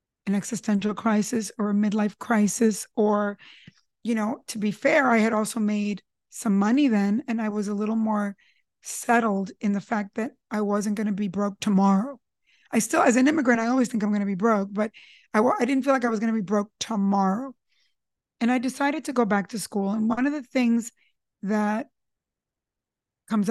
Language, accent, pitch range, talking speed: English, American, 205-245 Hz, 200 wpm